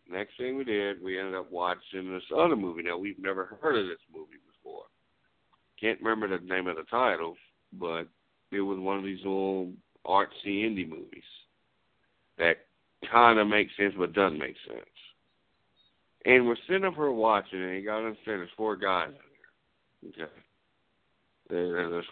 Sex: male